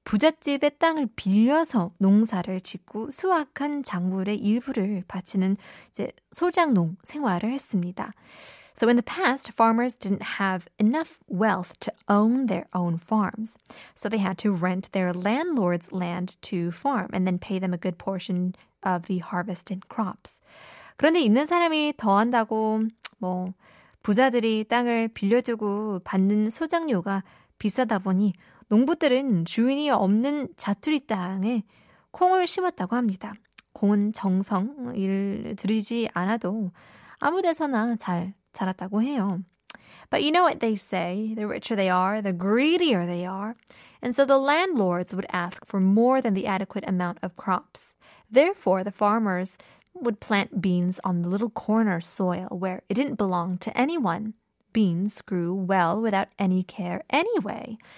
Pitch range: 190-240 Hz